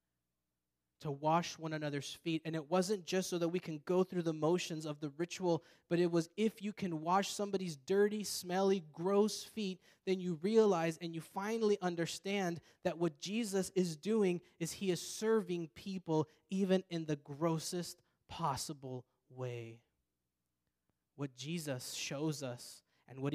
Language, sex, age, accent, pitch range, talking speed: English, male, 20-39, American, 110-165 Hz, 155 wpm